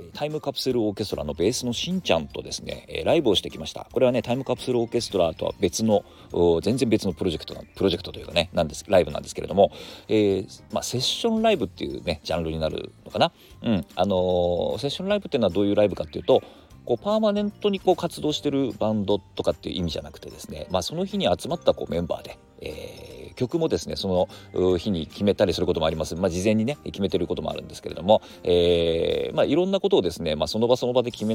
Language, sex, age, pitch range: Japanese, male, 40-59, 90-130 Hz